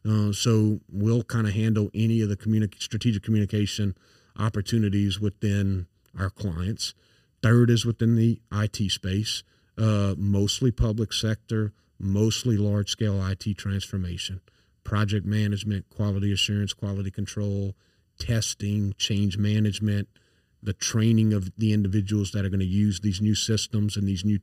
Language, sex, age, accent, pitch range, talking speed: English, male, 40-59, American, 100-110 Hz, 135 wpm